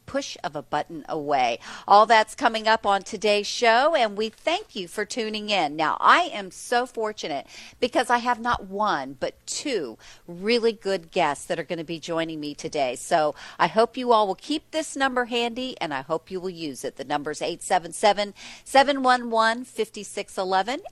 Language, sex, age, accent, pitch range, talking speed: English, female, 50-69, American, 170-245 Hz, 185 wpm